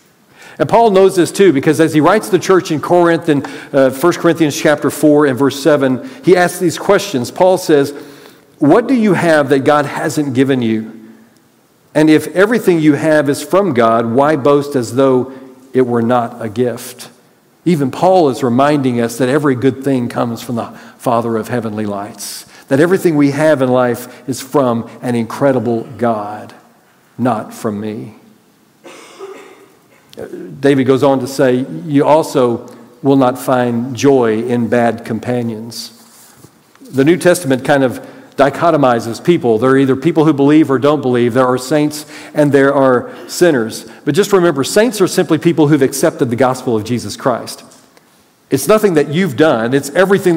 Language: English